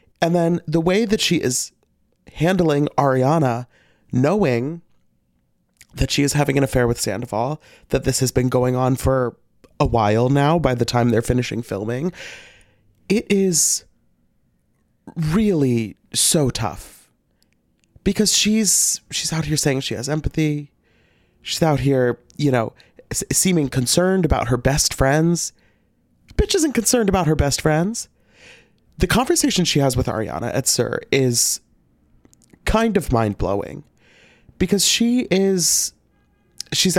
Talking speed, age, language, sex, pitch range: 135 wpm, 30-49, English, male, 130-195 Hz